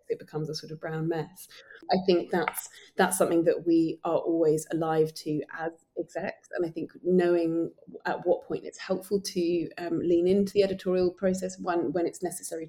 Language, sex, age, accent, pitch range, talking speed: English, female, 30-49, British, 155-185 Hz, 190 wpm